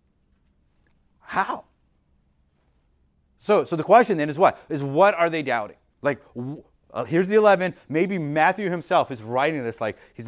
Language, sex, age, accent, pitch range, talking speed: English, male, 30-49, American, 105-165 Hz, 160 wpm